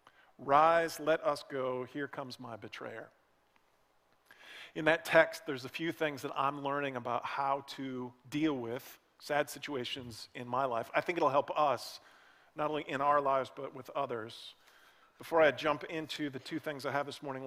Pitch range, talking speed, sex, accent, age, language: 130-150 Hz, 180 wpm, male, American, 40-59, English